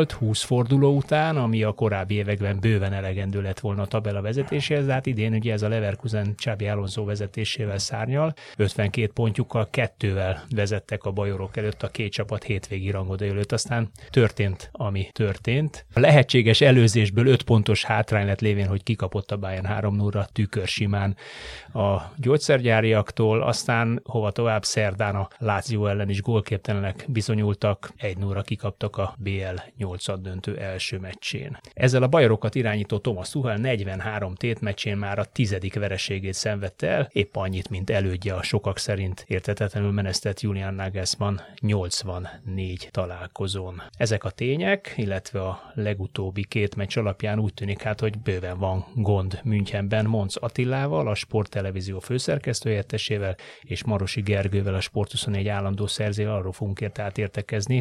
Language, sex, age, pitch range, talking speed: Hungarian, male, 30-49, 100-115 Hz, 140 wpm